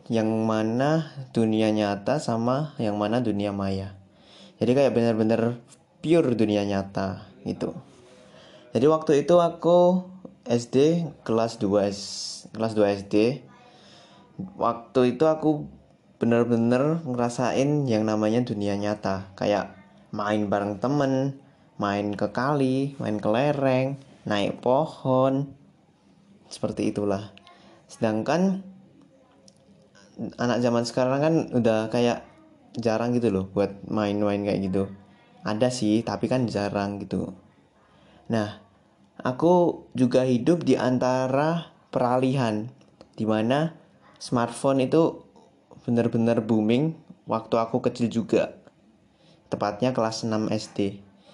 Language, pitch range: Indonesian, 105-140 Hz